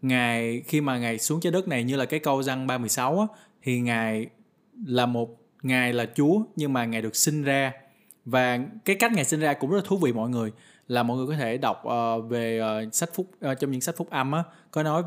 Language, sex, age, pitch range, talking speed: Vietnamese, male, 20-39, 120-155 Hz, 240 wpm